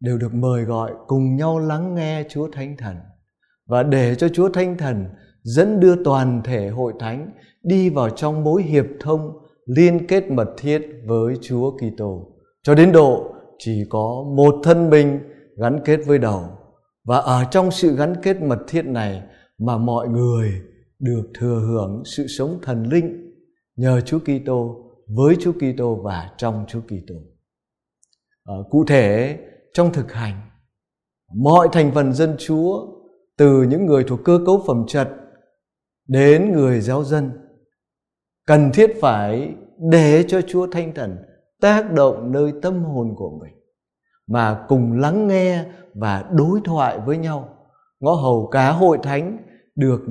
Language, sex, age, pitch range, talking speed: Vietnamese, male, 20-39, 120-165 Hz, 155 wpm